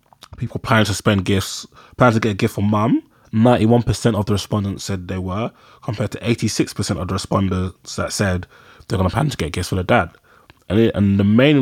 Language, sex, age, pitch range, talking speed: English, male, 20-39, 95-120 Hz, 215 wpm